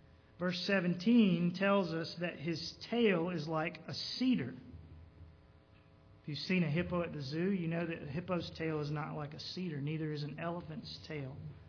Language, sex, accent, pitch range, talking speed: English, male, American, 150-195 Hz, 180 wpm